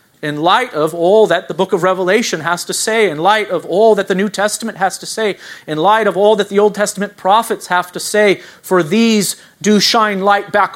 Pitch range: 145-190 Hz